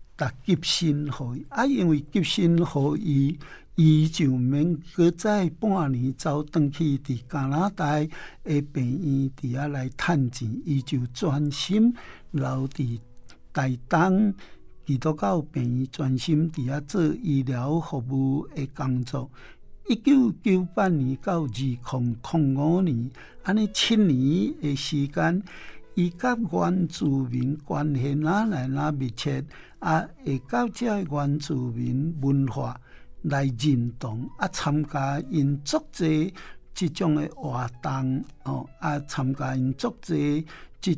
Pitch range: 135-165 Hz